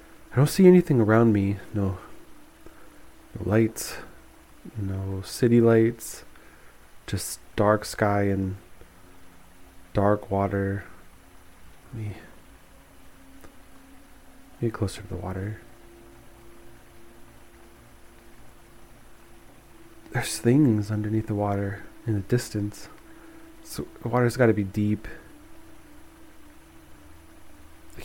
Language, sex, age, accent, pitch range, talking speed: English, male, 20-39, American, 90-115 Hz, 85 wpm